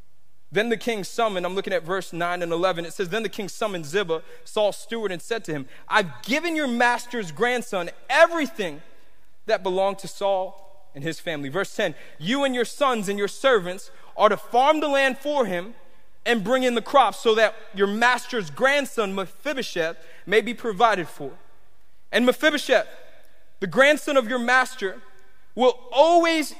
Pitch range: 180-250 Hz